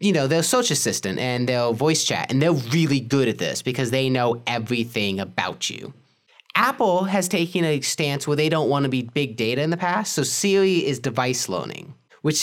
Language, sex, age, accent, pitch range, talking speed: English, male, 20-39, American, 120-170 Hz, 210 wpm